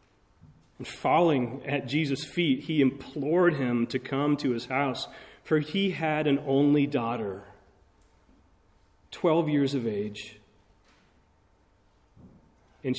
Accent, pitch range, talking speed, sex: American, 100-145 Hz, 110 wpm, male